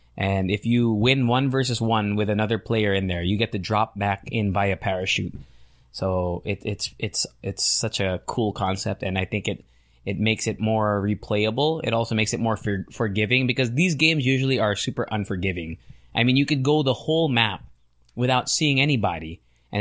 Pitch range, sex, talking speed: 100-120 Hz, male, 195 wpm